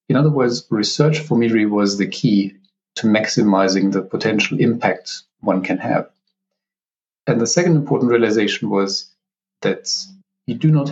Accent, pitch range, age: German, 100-135 Hz, 40-59